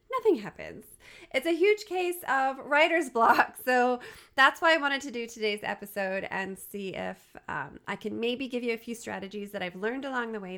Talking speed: 205 wpm